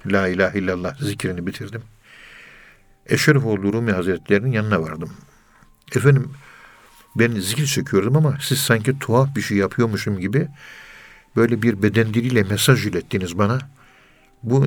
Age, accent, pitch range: 60-79, native, 100-130 Hz